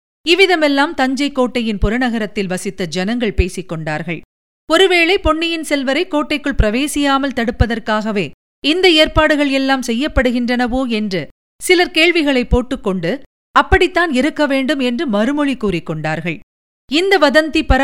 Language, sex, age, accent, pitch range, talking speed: Tamil, female, 50-69, native, 220-305 Hz, 100 wpm